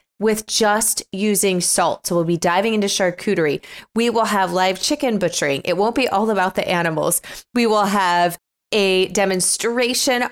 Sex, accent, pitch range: female, American, 185-225 Hz